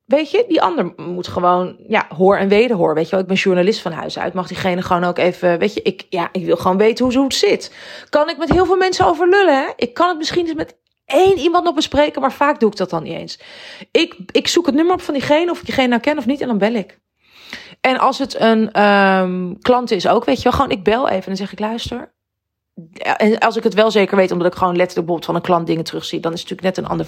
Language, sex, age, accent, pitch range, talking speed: Dutch, female, 30-49, Dutch, 180-230 Hz, 280 wpm